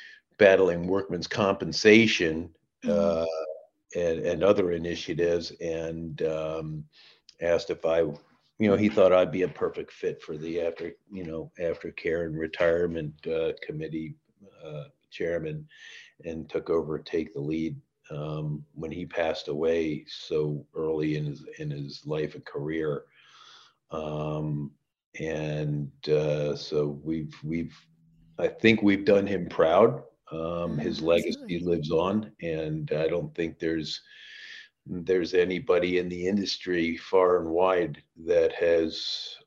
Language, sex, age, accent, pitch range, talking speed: English, male, 50-69, American, 75-100 Hz, 130 wpm